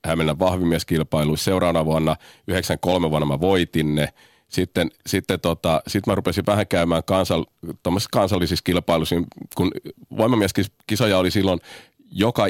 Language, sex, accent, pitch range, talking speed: Finnish, male, native, 80-100 Hz, 120 wpm